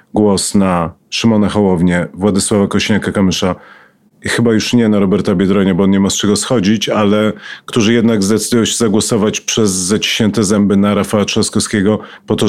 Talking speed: 160 wpm